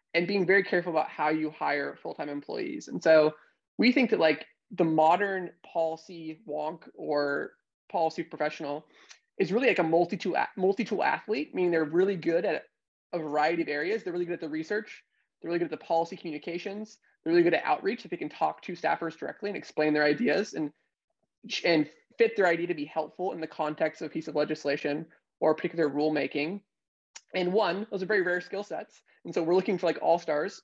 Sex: male